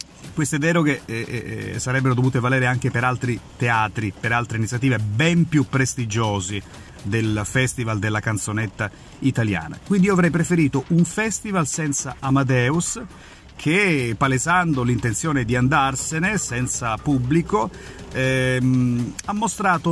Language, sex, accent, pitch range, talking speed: Italian, male, native, 120-165 Hz, 120 wpm